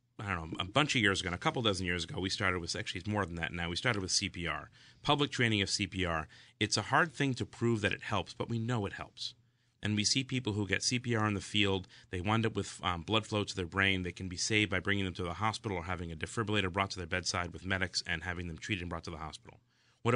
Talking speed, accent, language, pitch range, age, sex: 280 wpm, American, English, 90-115 Hz, 30-49, male